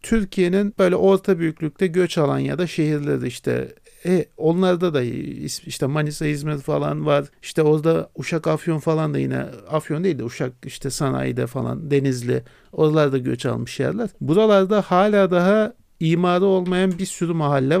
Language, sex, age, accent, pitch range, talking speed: Turkish, male, 50-69, native, 150-185 Hz, 150 wpm